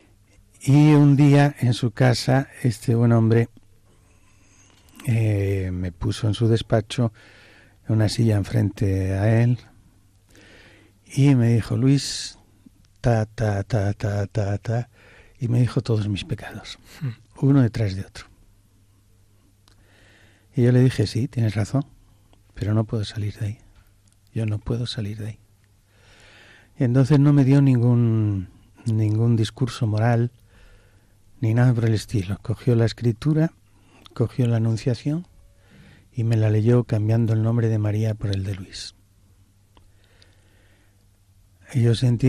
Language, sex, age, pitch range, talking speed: Spanish, male, 60-79, 100-115 Hz, 135 wpm